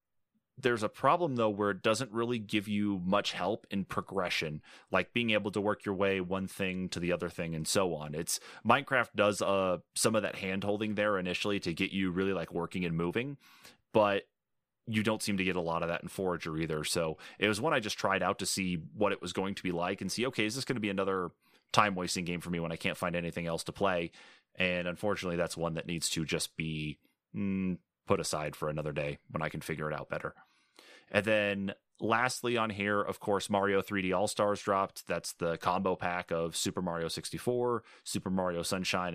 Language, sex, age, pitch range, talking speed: English, male, 30-49, 90-105 Hz, 220 wpm